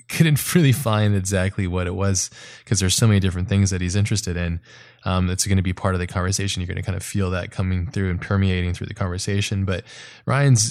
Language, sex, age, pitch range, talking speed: English, male, 20-39, 90-105 Hz, 235 wpm